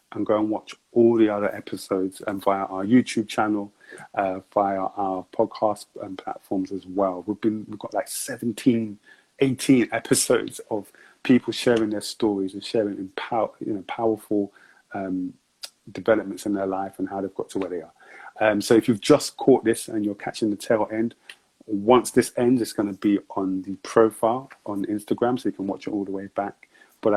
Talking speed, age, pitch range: 195 wpm, 30-49, 100-125 Hz